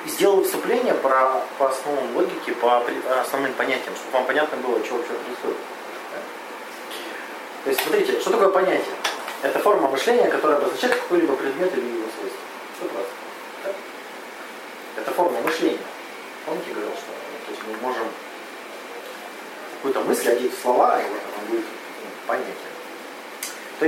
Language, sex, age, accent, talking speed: Russian, male, 30-49, native, 140 wpm